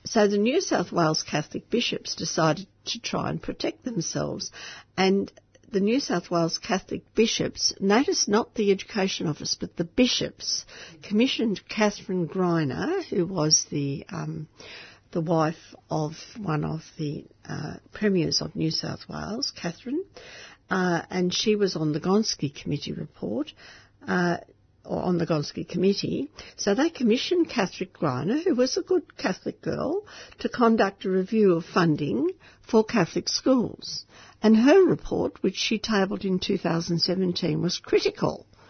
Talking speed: 145 wpm